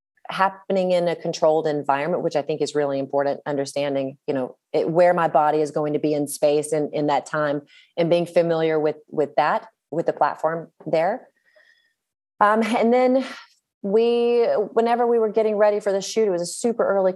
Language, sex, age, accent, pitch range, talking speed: English, female, 30-49, American, 145-185 Hz, 190 wpm